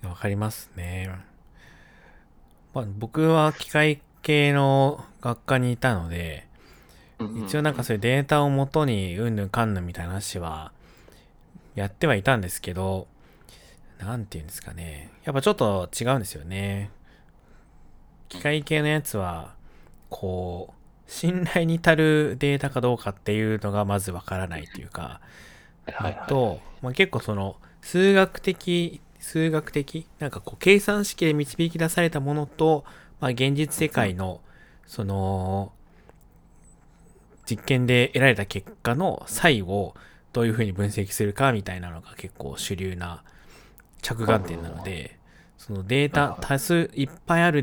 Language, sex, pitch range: Japanese, male, 95-145 Hz